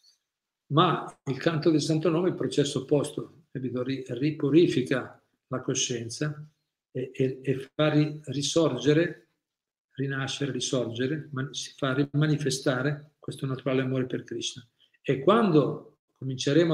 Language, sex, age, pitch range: Italian, male, 50-69, 135-165 Hz